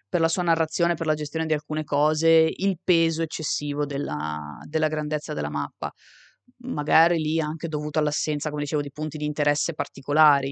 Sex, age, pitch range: female, 20-39, 135-170 Hz